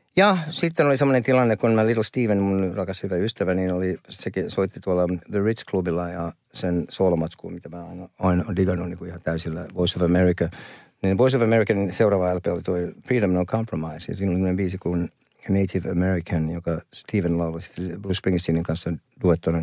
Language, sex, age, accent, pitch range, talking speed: Finnish, male, 50-69, native, 90-110 Hz, 175 wpm